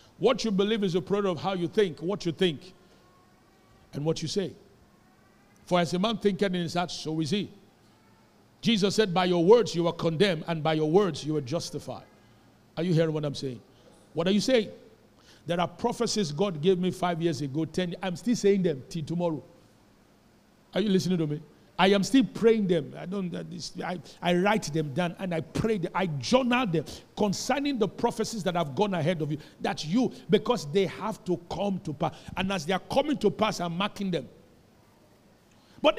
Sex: male